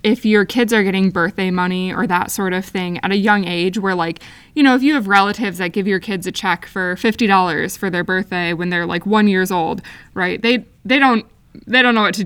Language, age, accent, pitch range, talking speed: English, 20-39, American, 190-240 Hz, 250 wpm